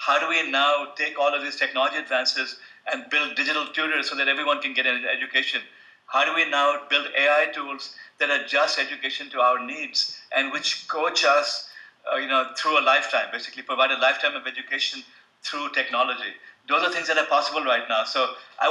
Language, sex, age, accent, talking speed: English, male, 50-69, Indian, 200 wpm